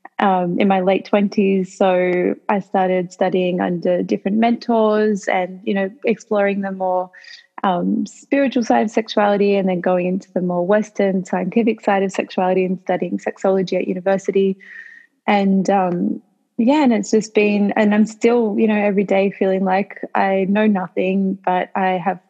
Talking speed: 165 wpm